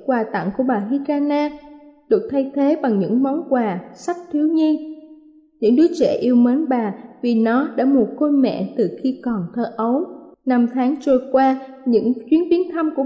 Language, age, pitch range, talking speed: Vietnamese, 20-39, 230-295 Hz, 190 wpm